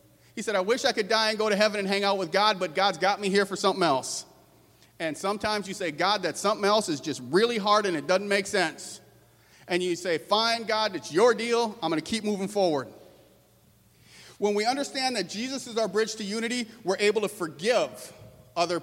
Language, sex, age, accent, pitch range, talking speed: English, male, 40-59, American, 160-215 Hz, 225 wpm